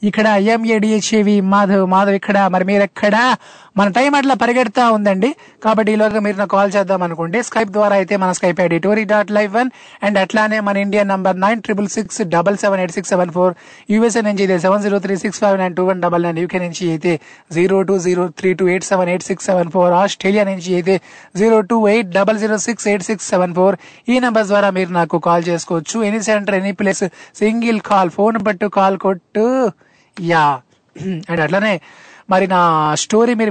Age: 20-39